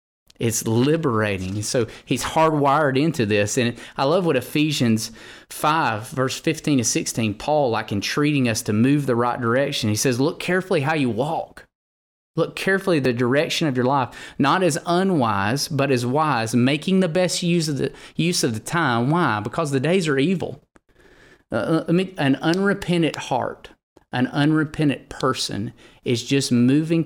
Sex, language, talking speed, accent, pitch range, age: male, English, 155 wpm, American, 115-150 Hz, 30-49